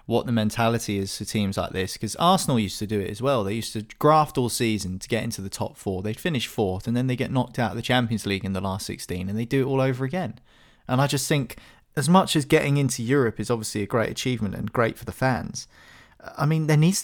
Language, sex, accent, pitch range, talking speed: English, male, British, 110-140 Hz, 270 wpm